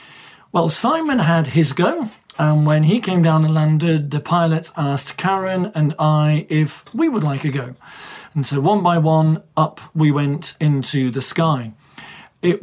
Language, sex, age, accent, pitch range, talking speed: English, male, 40-59, British, 145-185 Hz, 170 wpm